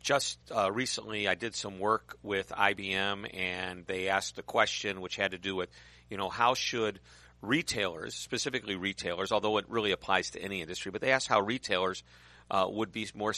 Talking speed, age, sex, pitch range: 190 wpm, 50-69, male, 95-120 Hz